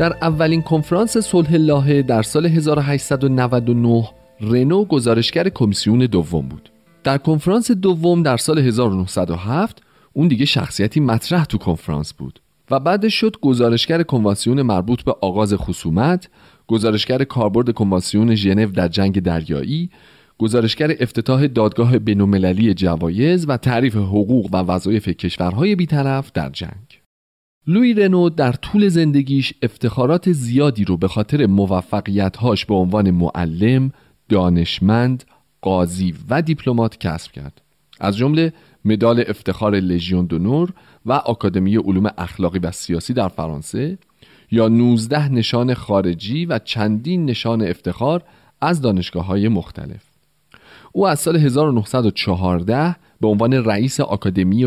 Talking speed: 120 wpm